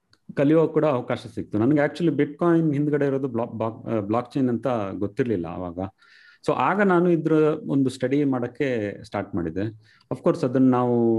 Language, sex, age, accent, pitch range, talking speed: Kannada, male, 30-49, native, 105-140 Hz, 140 wpm